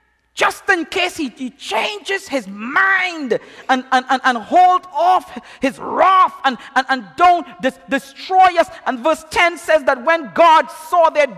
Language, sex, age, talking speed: English, male, 40-59, 170 wpm